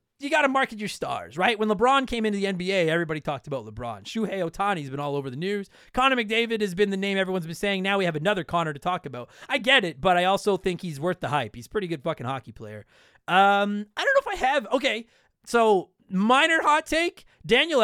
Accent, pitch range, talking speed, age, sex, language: American, 170-225 Hz, 245 wpm, 30-49, male, English